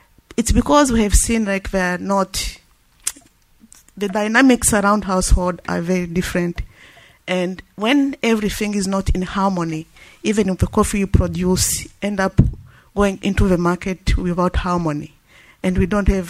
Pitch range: 175-200 Hz